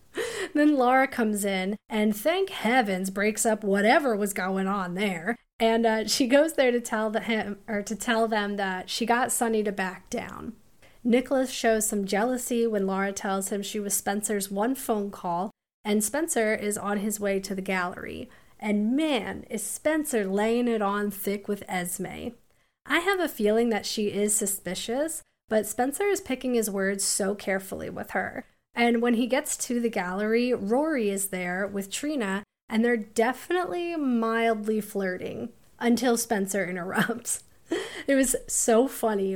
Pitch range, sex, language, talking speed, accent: 200-245 Hz, female, English, 160 wpm, American